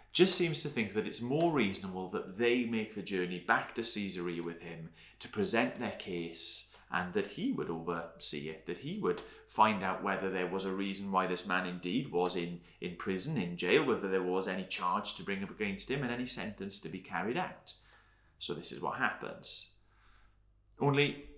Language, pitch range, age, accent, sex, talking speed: English, 95-120 Hz, 30-49, British, male, 200 wpm